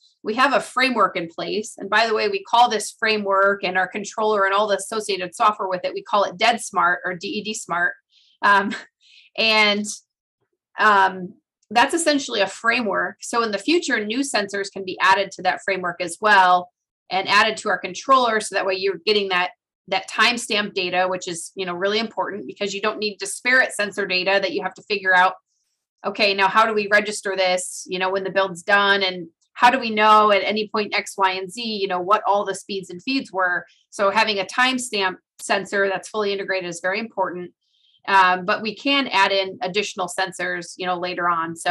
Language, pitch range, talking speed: English, 185-215 Hz, 205 wpm